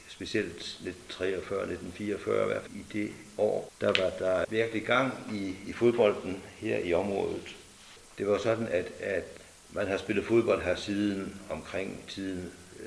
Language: Danish